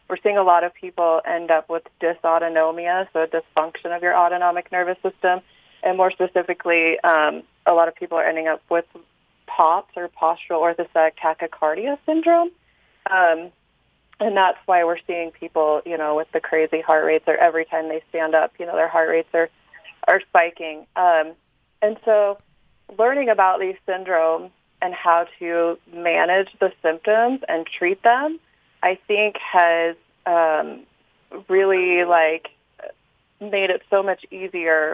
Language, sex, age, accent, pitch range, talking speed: English, female, 30-49, American, 165-190 Hz, 155 wpm